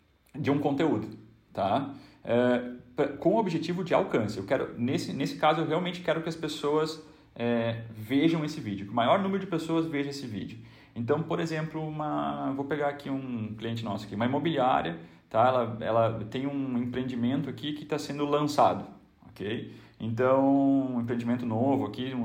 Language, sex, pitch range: Vietnamese, male, 115-145 Hz